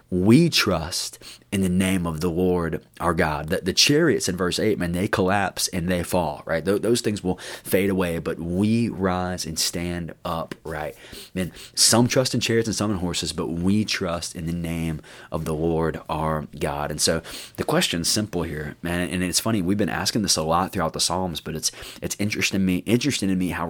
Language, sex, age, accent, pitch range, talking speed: English, male, 20-39, American, 85-110 Hz, 215 wpm